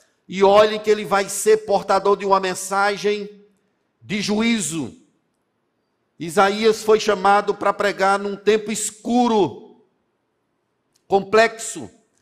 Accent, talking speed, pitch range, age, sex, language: Brazilian, 105 wpm, 190-215 Hz, 50-69, male, Portuguese